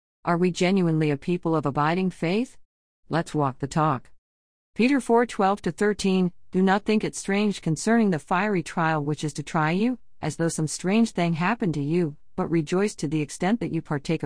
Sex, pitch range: female, 145-185 Hz